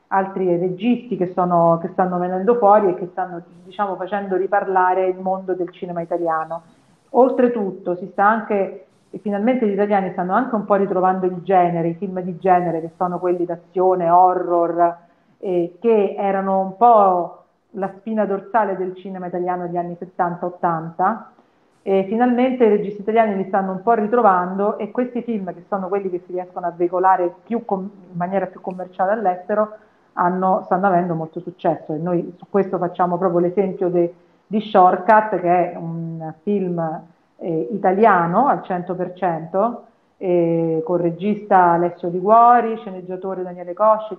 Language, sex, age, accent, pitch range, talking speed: Italian, female, 40-59, native, 180-205 Hz, 155 wpm